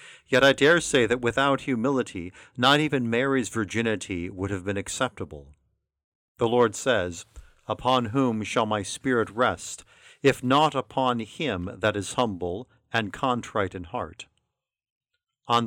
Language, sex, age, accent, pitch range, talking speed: English, male, 50-69, American, 100-130 Hz, 140 wpm